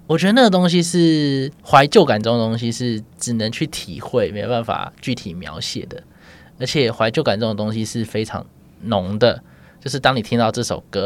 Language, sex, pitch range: Chinese, male, 105-150 Hz